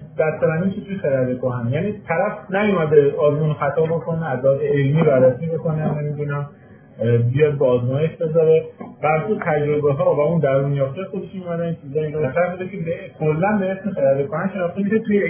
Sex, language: male, Persian